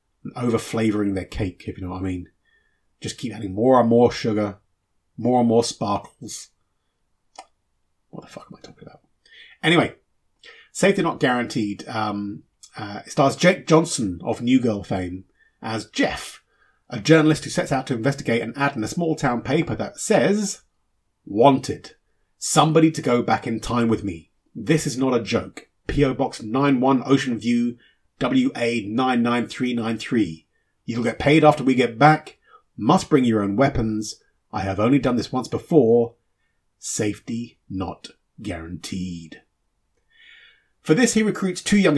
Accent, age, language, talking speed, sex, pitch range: British, 30-49, English, 160 wpm, male, 110-145 Hz